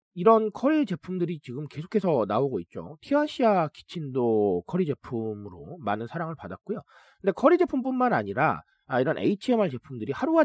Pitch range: 145-215 Hz